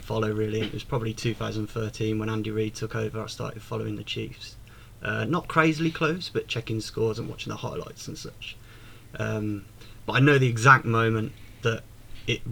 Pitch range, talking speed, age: 110-130 Hz, 180 wpm, 20-39